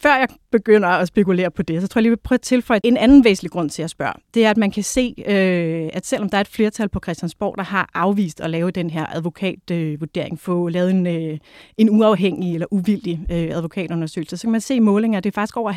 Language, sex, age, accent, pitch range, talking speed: Danish, female, 30-49, native, 175-210 Hz, 230 wpm